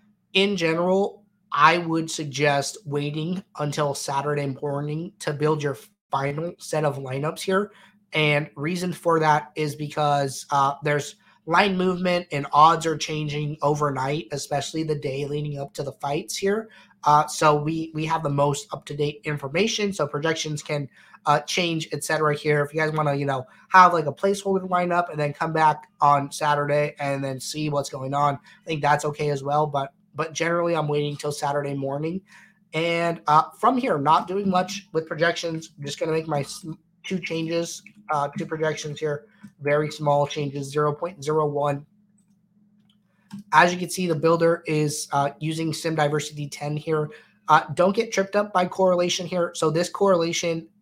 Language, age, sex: English, 20-39, male